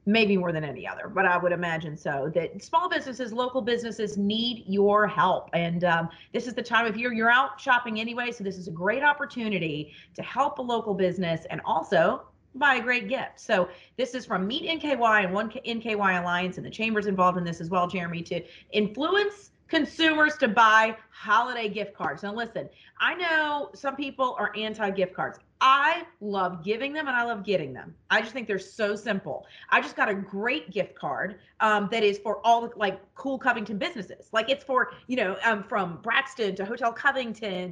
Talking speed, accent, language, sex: 200 wpm, American, English, female